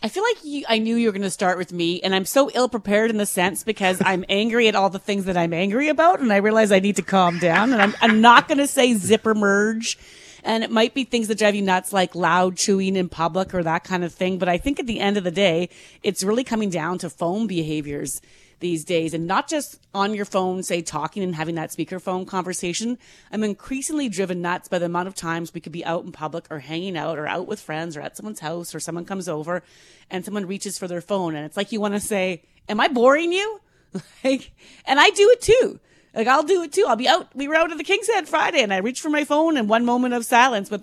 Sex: female